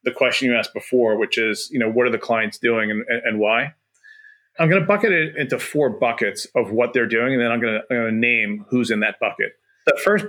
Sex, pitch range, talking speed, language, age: male, 115-140 Hz, 255 wpm, English, 30-49